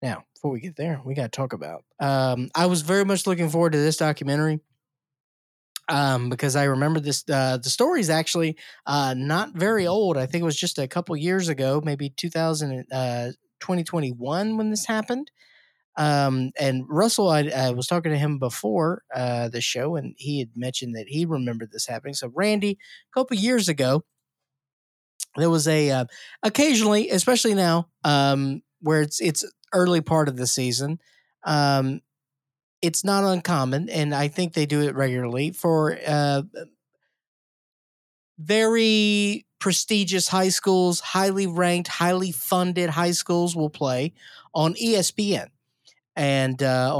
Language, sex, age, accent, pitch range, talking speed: English, male, 20-39, American, 135-180 Hz, 155 wpm